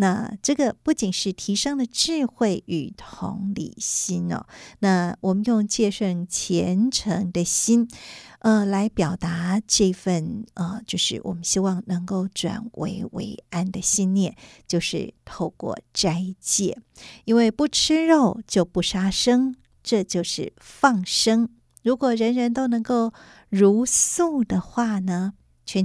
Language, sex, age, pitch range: Chinese, female, 50-69, 185-230 Hz